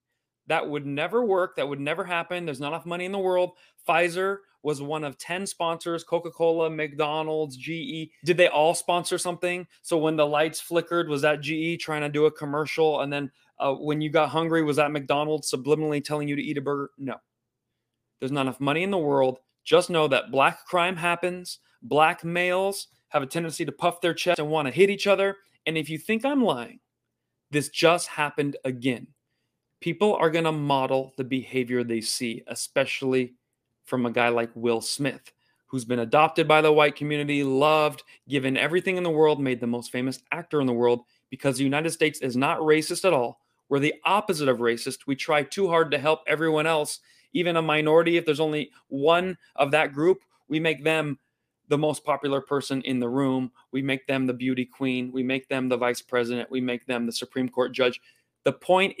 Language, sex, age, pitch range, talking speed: English, male, 30-49, 130-165 Hz, 200 wpm